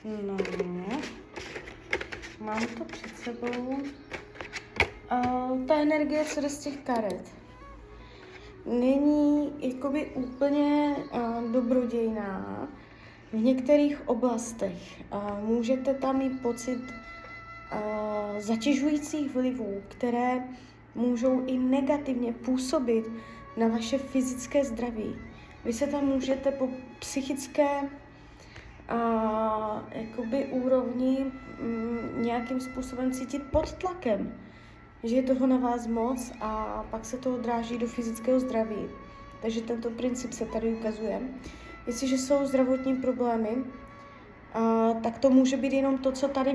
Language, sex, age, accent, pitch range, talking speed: Czech, female, 20-39, native, 230-270 Hz, 100 wpm